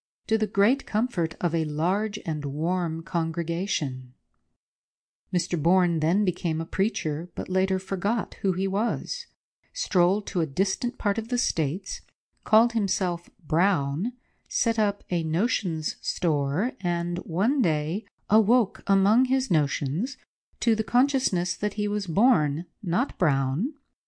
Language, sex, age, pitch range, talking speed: English, female, 50-69, 160-195 Hz, 135 wpm